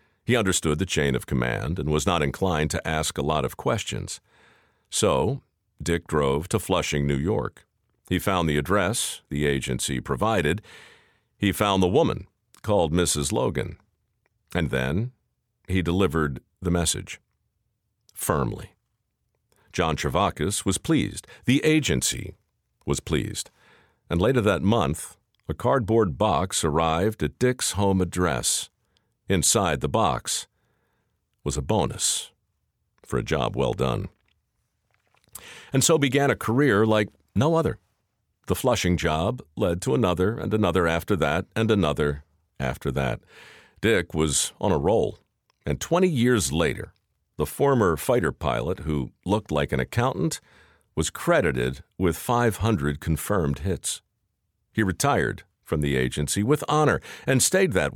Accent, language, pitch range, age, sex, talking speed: American, English, 75-110 Hz, 50-69, male, 135 wpm